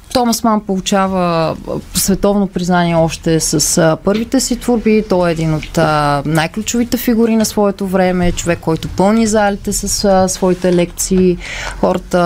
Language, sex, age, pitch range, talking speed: Bulgarian, female, 30-49, 175-215 Hz, 140 wpm